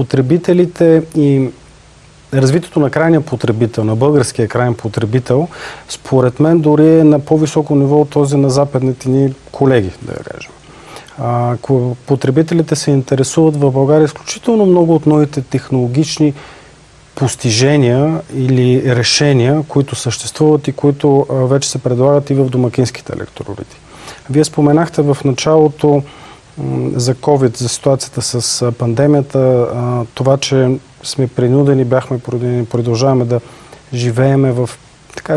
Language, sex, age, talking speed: Bulgarian, male, 40-59, 120 wpm